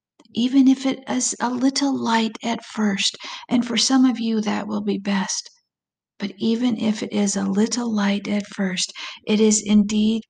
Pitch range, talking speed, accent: 200-220 Hz, 180 wpm, American